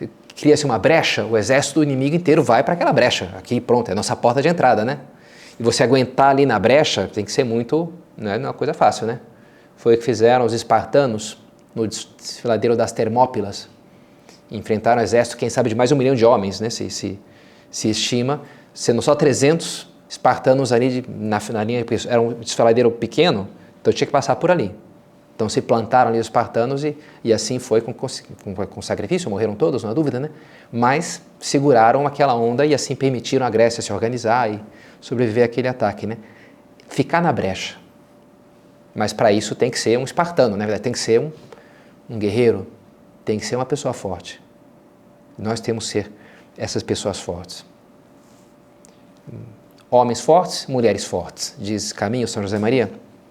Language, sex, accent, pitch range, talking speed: Portuguese, male, Brazilian, 110-135 Hz, 180 wpm